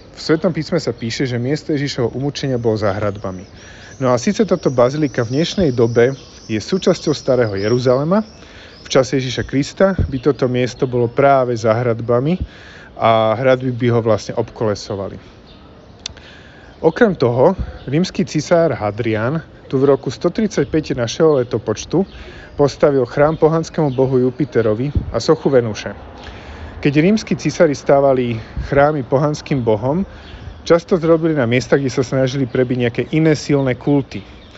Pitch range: 120-150 Hz